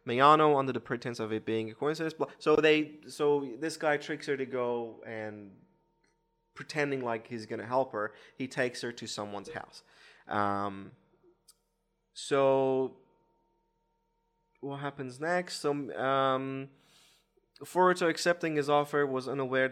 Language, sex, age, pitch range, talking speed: English, male, 20-39, 110-140 Hz, 135 wpm